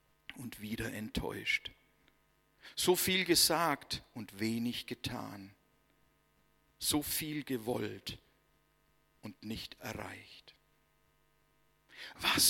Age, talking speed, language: 60-79, 75 wpm, German